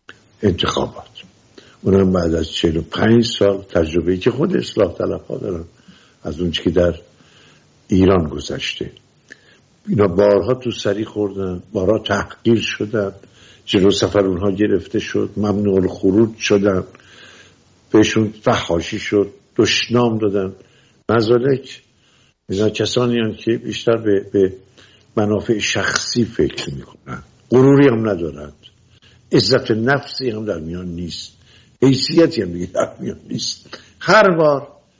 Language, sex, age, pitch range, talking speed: English, male, 60-79, 90-115 Hz, 115 wpm